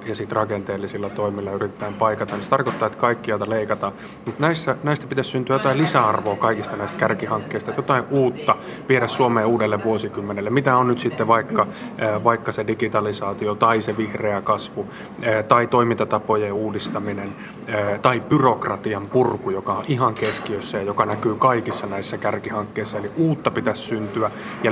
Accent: native